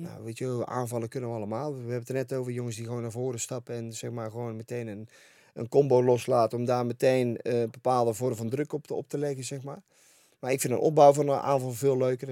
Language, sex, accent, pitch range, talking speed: Dutch, male, Dutch, 115-140 Hz, 260 wpm